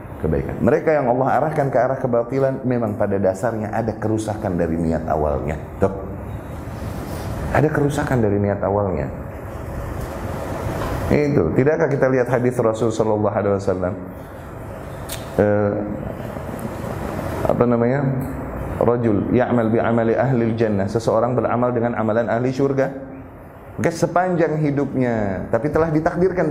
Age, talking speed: 30-49, 105 wpm